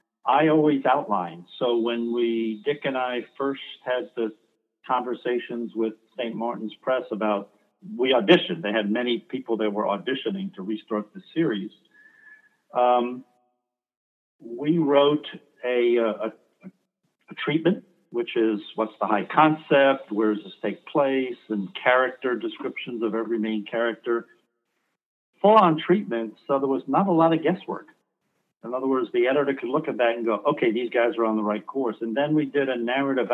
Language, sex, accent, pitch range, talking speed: English, male, American, 110-140 Hz, 165 wpm